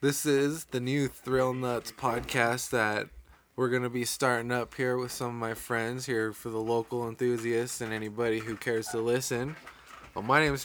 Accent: American